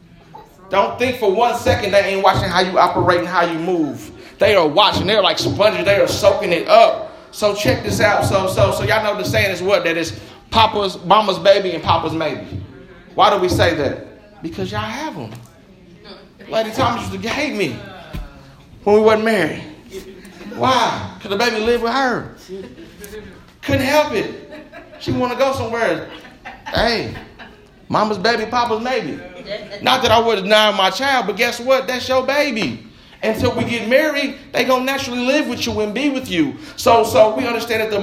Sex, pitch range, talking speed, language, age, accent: male, 180-245 Hz, 185 wpm, English, 30-49, American